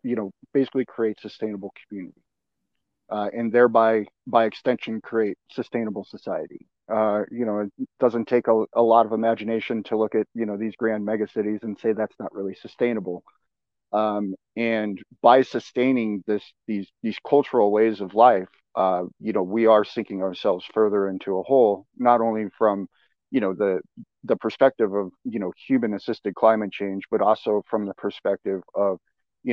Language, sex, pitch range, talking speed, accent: English, male, 100-115 Hz, 170 wpm, American